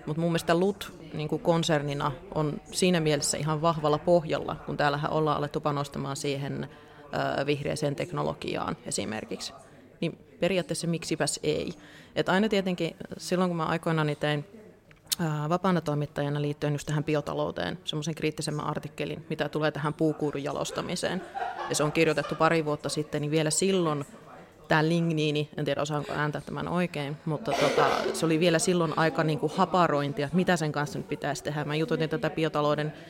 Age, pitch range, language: 30-49, 150-170 Hz, Finnish